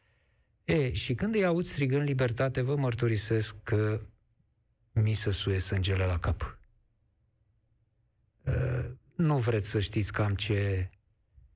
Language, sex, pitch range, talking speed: Romanian, male, 110-160 Hz, 120 wpm